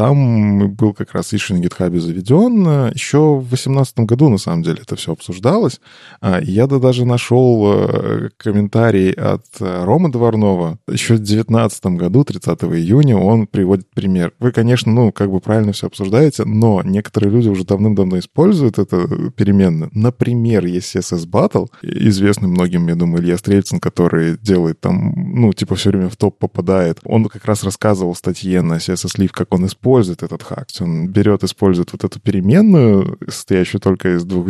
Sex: male